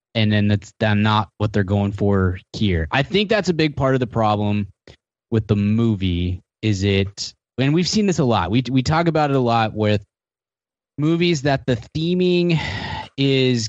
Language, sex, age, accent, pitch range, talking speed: English, male, 20-39, American, 105-130 Hz, 185 wpm